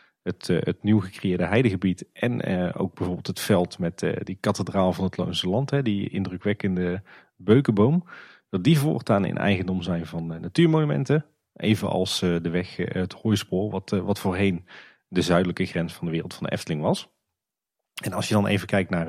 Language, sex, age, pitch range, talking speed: Dutch, male, 40-59, 95-115 Hz, 165 wpm